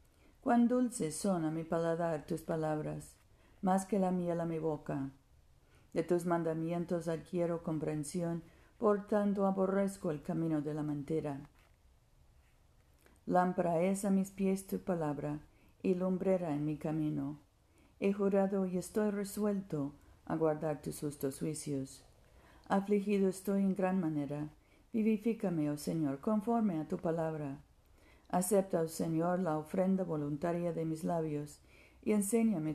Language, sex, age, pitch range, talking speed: Spanish, female, 50-69, 150-190 Hz, 130 wpm